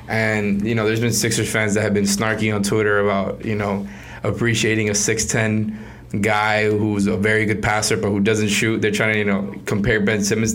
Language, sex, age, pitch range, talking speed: English, male, 20-39, 105-120 Hz, 210 wpm